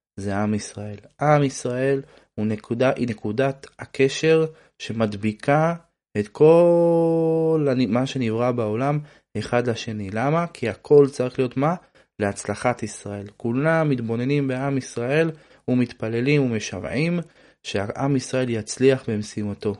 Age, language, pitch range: 20-39, Hebrew, 105-140 Hz